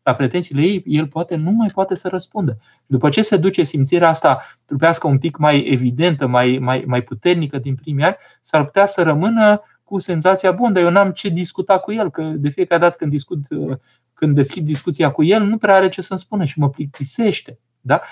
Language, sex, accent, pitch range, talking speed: Romanian, male, native, 135-185 Hz, 210 wpm